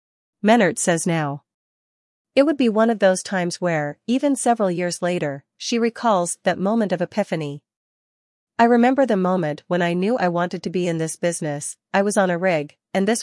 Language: English